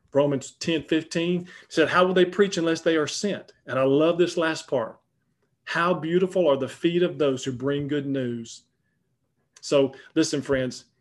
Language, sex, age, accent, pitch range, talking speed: English, male, 40-59, American, 130-170 Hz, 175 wpm